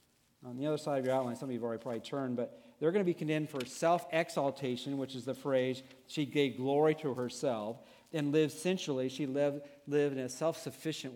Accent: American